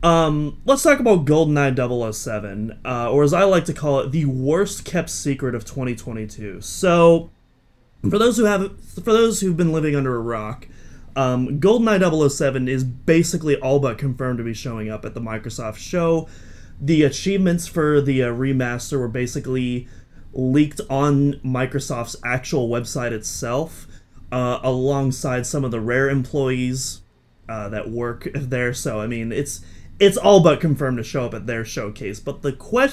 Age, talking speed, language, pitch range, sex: 30-49, 165 wpm, English, 120-160 Hz, male